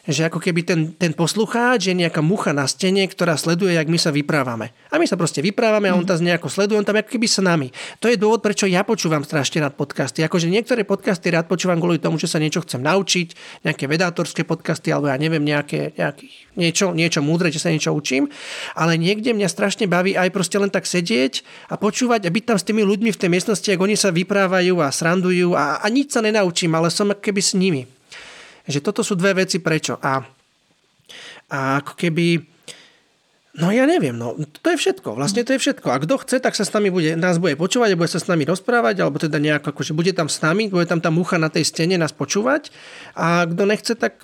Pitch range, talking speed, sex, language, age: 160-205 Hz, 220 wpm, male, Slovak, 40-59